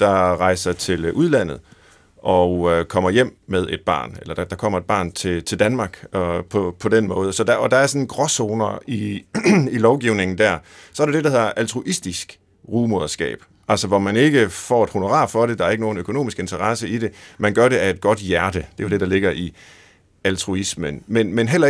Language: Danish